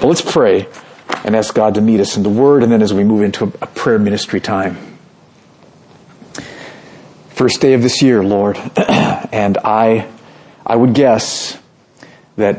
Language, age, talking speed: English, 50-69, 155 wpm